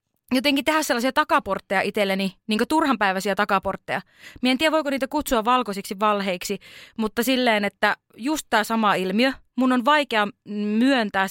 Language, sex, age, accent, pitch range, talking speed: Finnish, female, 20-39, native, 195-240 Hz, 150 wpm